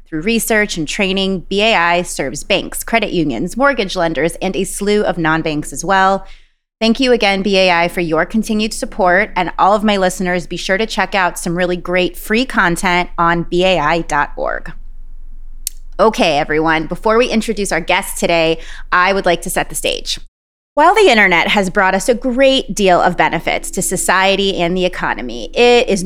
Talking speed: 175 wpm